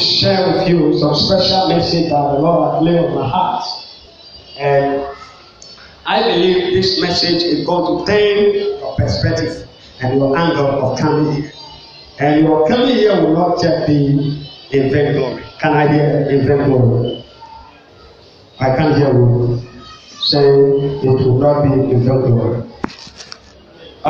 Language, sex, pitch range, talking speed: English, male, 140-175 Hz, 135 wpm